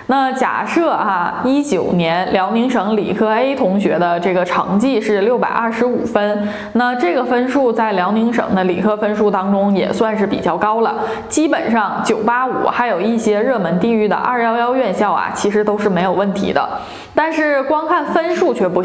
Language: Chinese